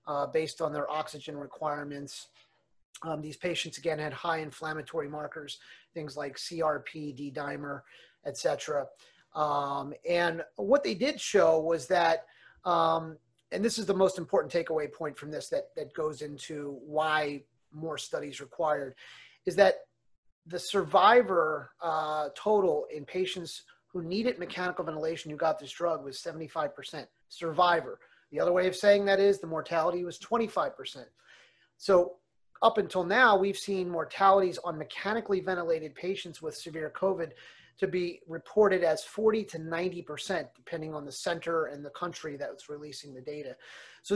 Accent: American